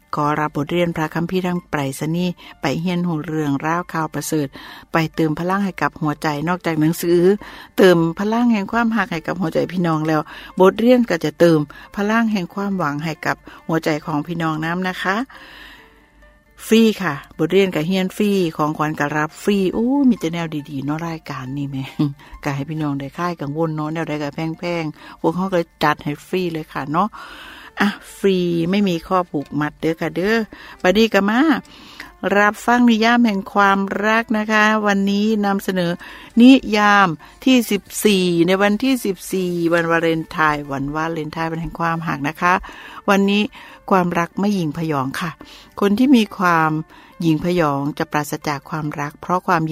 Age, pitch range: 60-79, 155-200 Hz